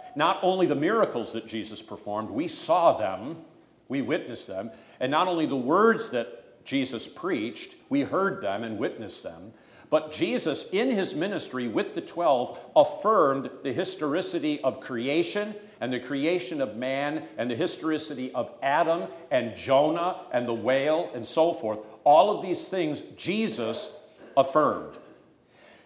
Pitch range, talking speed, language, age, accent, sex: 125-175 Hz, 150 wpm, English, 50-69, American, male